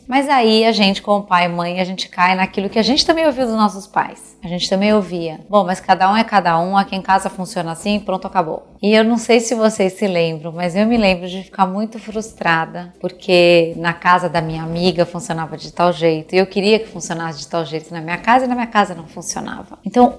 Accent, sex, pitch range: Brazilian, female, 175-225 Hz